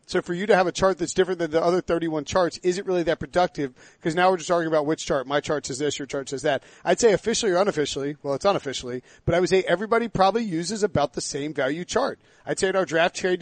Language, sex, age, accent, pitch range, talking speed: English, male, 40-59, American, 155-195 Hz, 275 wpm